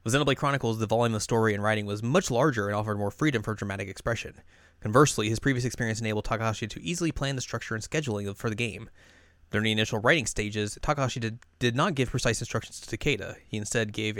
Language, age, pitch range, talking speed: English, 20-39, 105-130 Hz, 215 wpm